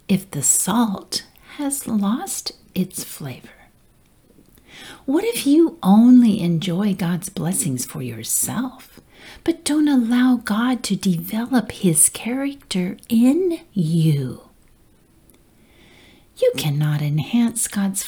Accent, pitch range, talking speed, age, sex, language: American, 180-260 Hz, 100 wpm, 50-69, female, English